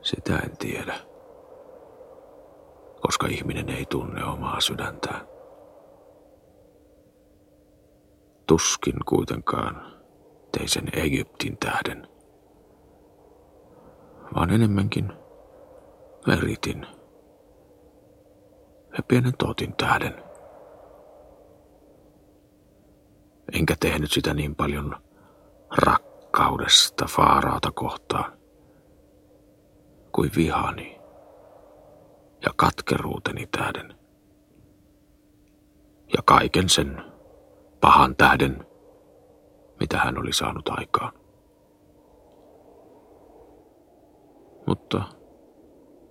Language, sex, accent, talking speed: Finnish, male, native, 60 wpm